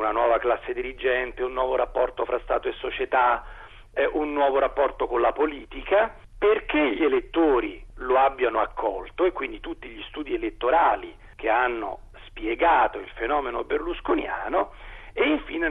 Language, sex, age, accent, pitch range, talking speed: Italian, male, 40-59, native, 345-415 Hz, 140 wpm